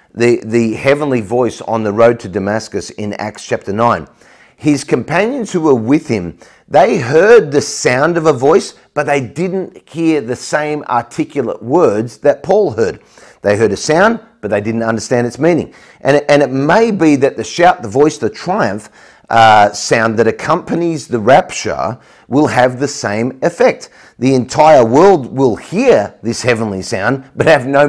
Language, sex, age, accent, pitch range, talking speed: English, male, 40-59, Australian, 110-155 Hz, 175 wpm